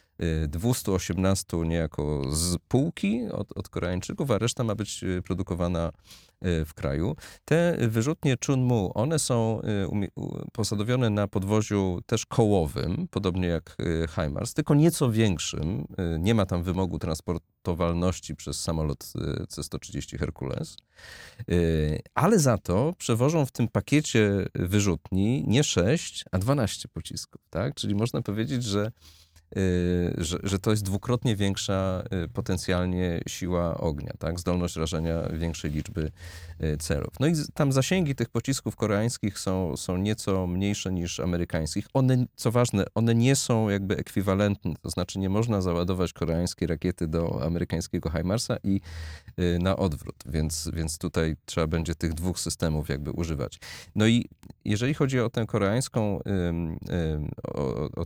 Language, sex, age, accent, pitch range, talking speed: Polish, male, 40-59, native, 85-110 Hz, 130 wpm